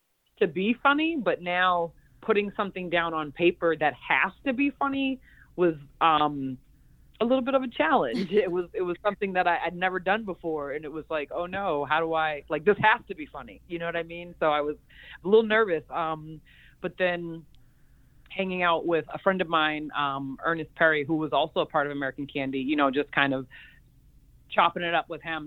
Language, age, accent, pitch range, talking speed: English, 30-49, American, 140-175 Hz, 215 wpm